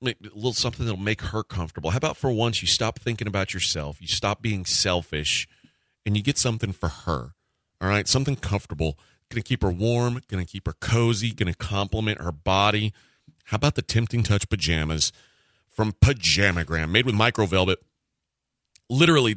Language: English